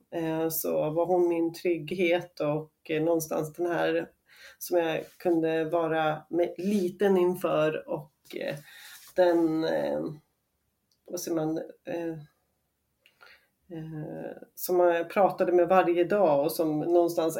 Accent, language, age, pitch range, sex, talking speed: native, Swedish, 30-49, 165-200 Hz, female, 100 wpm